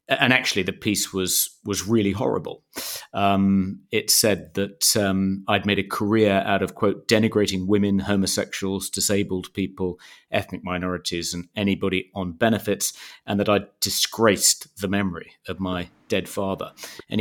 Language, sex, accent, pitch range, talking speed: English, male, British, 95-105 Hz, 150 wpm